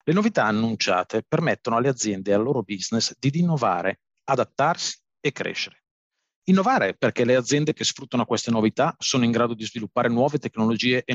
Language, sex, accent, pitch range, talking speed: Italian, male, native, 110-145 Hz, 165 wpm